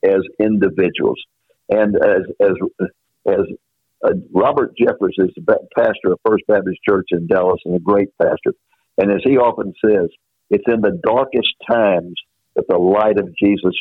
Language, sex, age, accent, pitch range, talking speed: English, male, 60-79, American, 100-135 Hz, 160 wpm